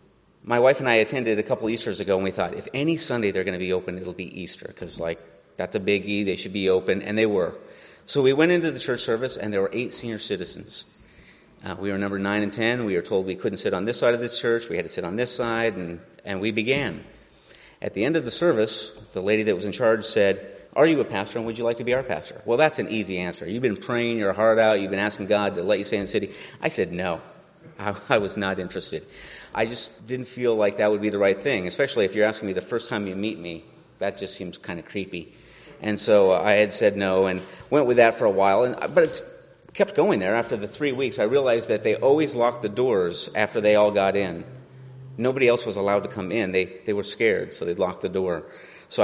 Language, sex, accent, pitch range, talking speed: English, male, American, 95-120 Hz, 260 wpm